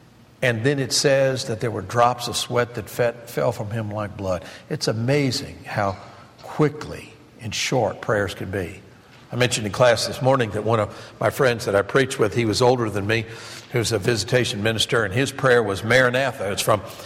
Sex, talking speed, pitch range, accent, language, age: male, 195 wpm, 110-135 Hz, American, English, 60-79